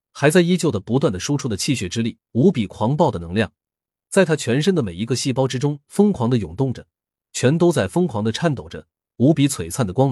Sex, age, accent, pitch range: male, 30-49, native, 100-150 Hz